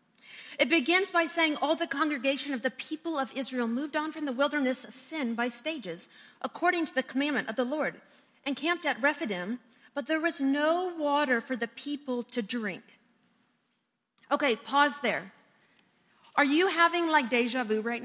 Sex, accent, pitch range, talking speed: female, American, 240-315 Hz, 175 wpm